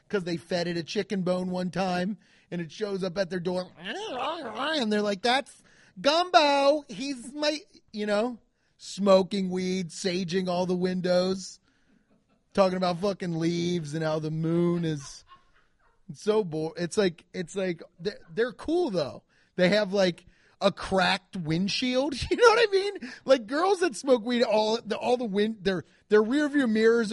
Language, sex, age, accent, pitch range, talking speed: English, male, 30-49, American, 175-220 Hz, 175 wpm